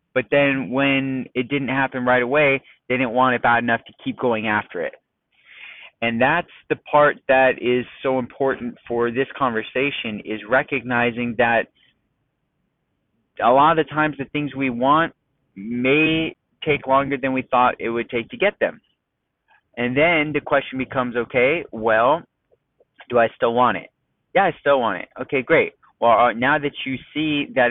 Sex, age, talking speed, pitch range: male, 30-49, 170 wpm, 120-140 Hz